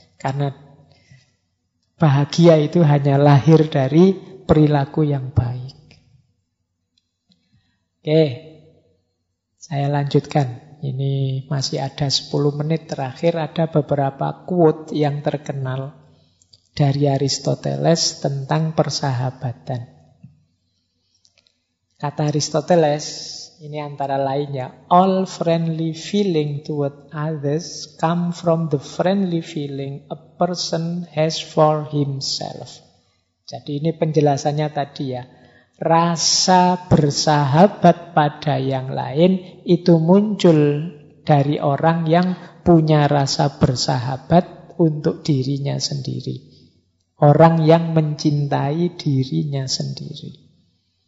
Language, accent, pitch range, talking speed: Indonesian, native, 135-160 Hz, 85 wpm